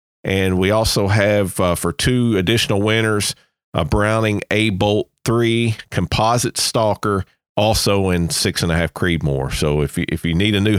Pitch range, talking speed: 90-110 Hz, 165 wpm